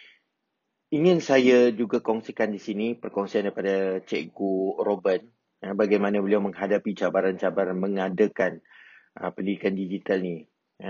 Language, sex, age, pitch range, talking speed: Malay, male, 30-49, 100-115 Hz, 115 wpm